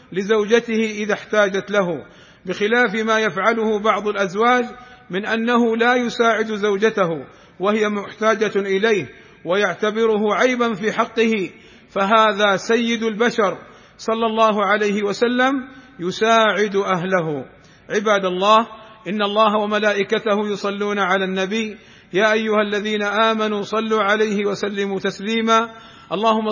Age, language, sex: 50-69, Arabic, male